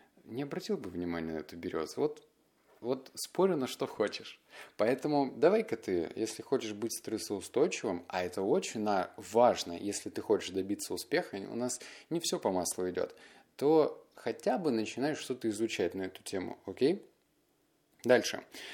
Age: 20-39